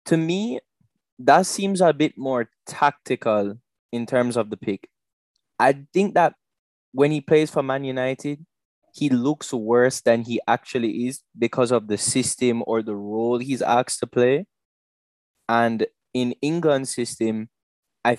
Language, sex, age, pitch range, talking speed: English, male, 20-39, 115-140 Hz, 150 wpm